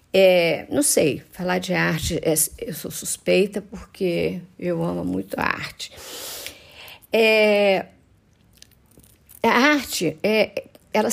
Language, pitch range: Romanian, 185-225 Hz